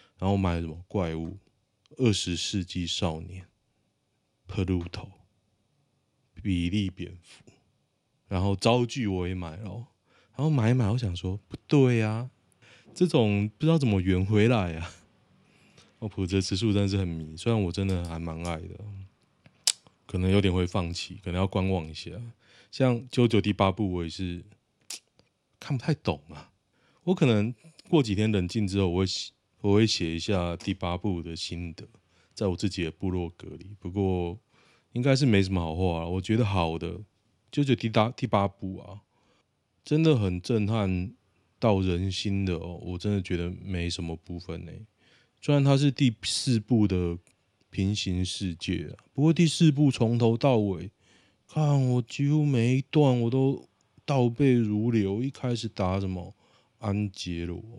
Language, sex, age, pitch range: Chinese, male, 20-39, 90-120 Hz